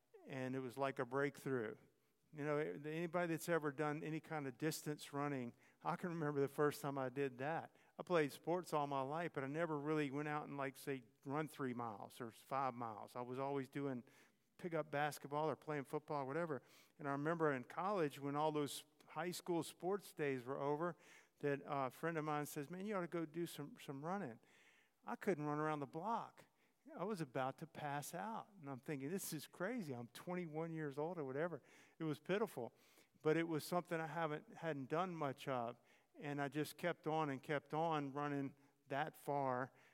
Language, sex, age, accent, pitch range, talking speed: English, male, 50-69, American, 135-160 Hz, 205 wpm